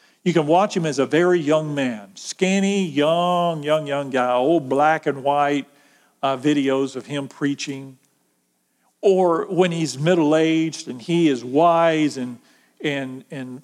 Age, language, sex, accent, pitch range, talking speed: 50-69, English, male, American, 150-215 Hz, 150 wpm